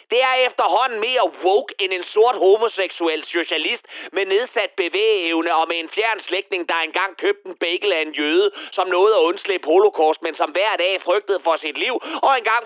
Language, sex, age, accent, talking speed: Danish, male, 30-49, native, 190 wpm